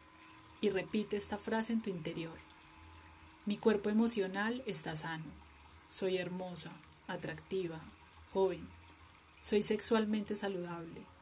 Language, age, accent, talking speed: Spanish, 30-49, Colombian, 100 wpm